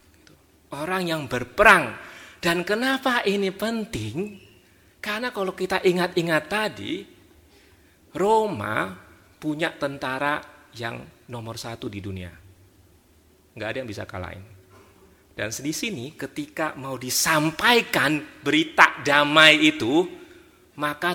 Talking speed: 95 wpm